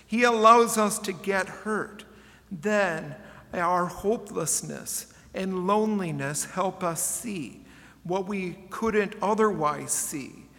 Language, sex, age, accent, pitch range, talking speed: English, male, 50-69, American, 170-210 Hz, 110 wpm